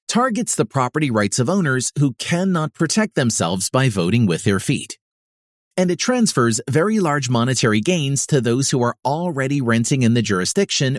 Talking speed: 170 wpm